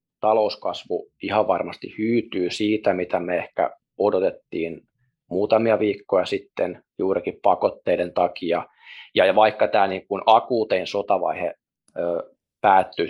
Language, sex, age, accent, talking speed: Finnish, male, 20-39, native, 100 wpm